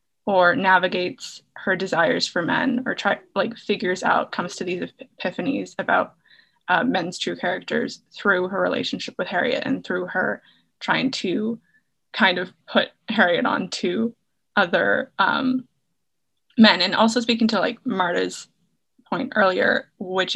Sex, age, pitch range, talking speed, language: female, 20-39, 200-255 Hz, 140 wpm, English